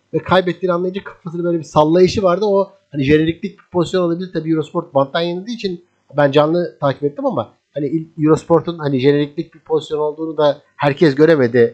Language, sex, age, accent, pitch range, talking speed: Turkish, male, 50-69, native, 150-195 Hz, 170 wpm